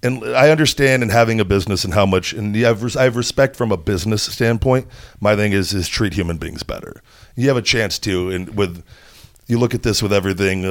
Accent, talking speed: American, 220 wpm